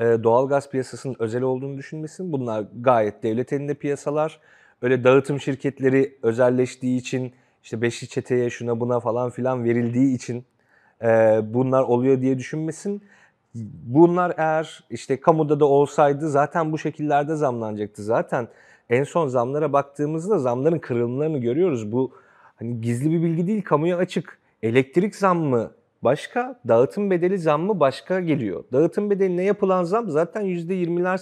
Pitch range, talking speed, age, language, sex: 125-165 Hz, 135 wpm, 40-59, Turkish, male